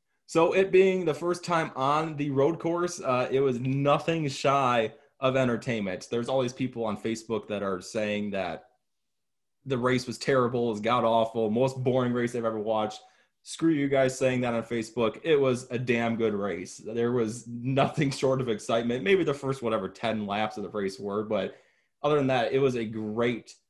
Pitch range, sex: 115-140 Hz, male